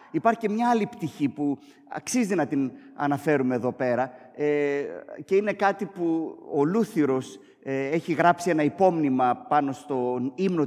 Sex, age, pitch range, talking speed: male, 30-49, 140-195 Hz, 140 wpm